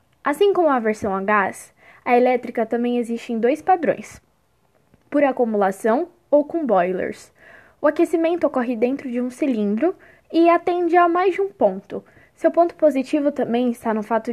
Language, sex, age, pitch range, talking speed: Portuguese, female, 10-29, 230-300 Hz, 165 wpm